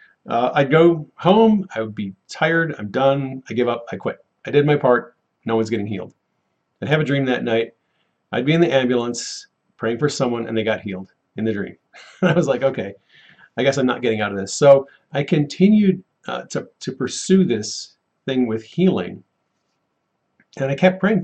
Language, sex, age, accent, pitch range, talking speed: English, male, 40-59, American, 115-175 Hz, 200 wpm